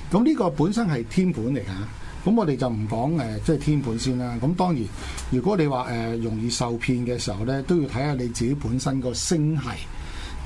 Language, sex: Chinese, male